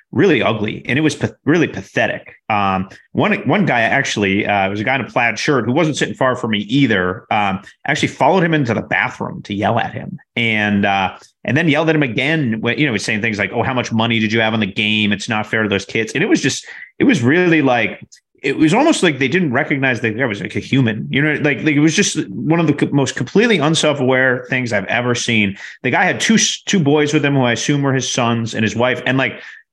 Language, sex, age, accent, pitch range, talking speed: English, male, 30-49, American, 110-145 Hz, 260 wpm